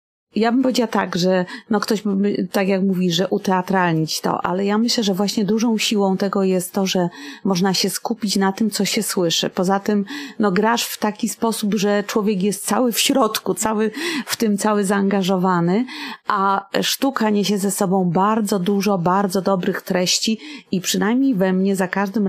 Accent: native